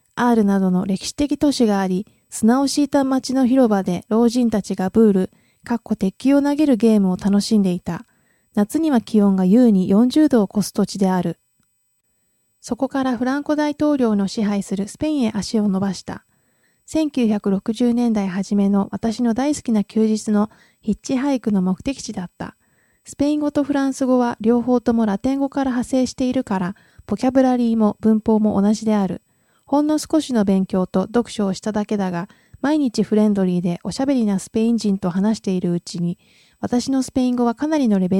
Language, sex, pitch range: Japanese, female, 195-255 Hz